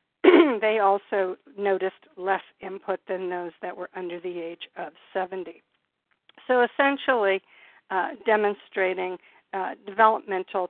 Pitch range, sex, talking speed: 180-215 Hz, female, 110 wpm